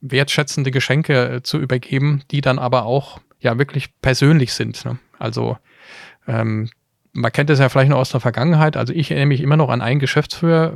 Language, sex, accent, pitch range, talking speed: German, male, German, 125-150 Hz, 180 wpm